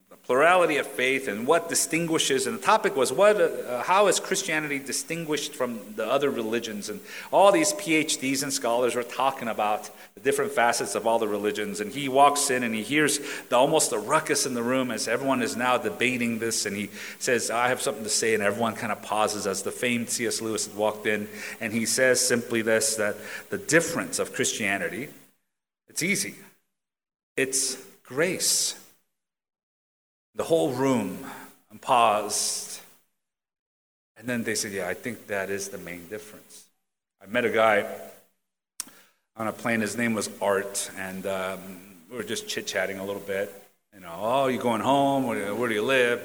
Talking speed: 180 wpm